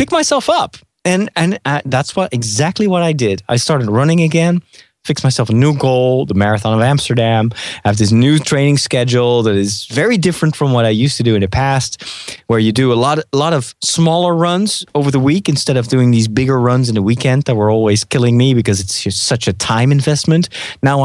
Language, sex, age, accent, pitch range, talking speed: English, male, 30-49, American, 110-145 Hz, 220 wpm